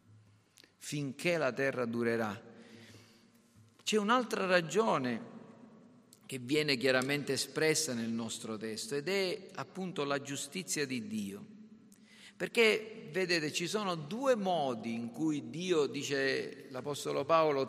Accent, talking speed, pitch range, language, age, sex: native, 110 wpm, 125-190 Hz, Italian, 50-69, male